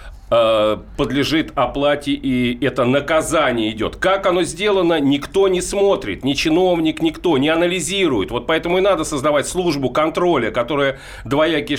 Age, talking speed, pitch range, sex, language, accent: 40-59, 130 wpm, 160-235 Hz, male, Russian, native